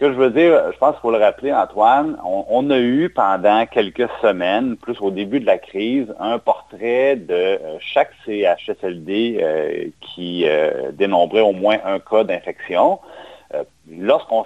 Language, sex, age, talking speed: French, male, 40-59, 160 wpm